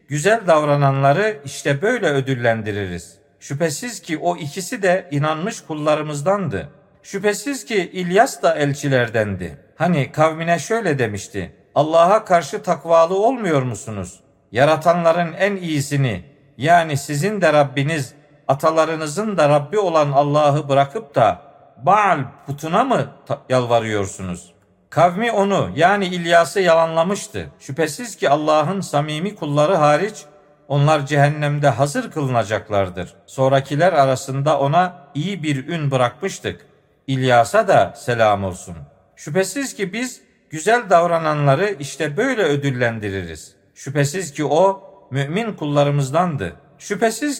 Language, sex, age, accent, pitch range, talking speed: Turkish, male, 50-69, native, 135-180 Hz, 105 wpm